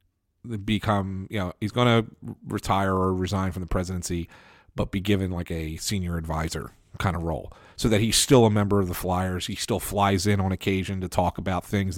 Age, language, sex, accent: 40-59, English, male, American